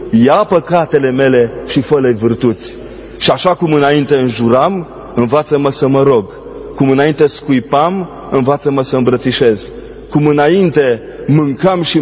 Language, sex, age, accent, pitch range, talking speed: Romanian, male, 30-49, native, 115-145 Hz, 130 wpm